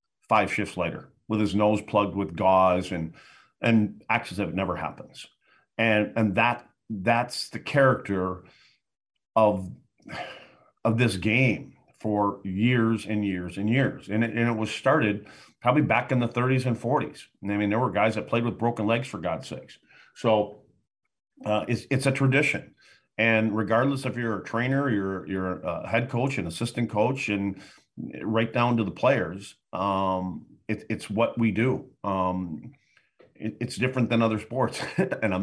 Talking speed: 170 wpm